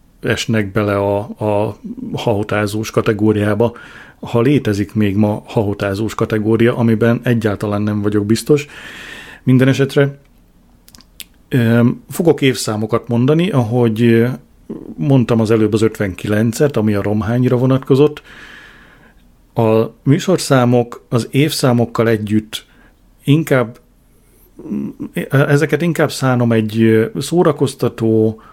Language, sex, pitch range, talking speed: Hungarian, male, 110-130 Hz, 90 wpm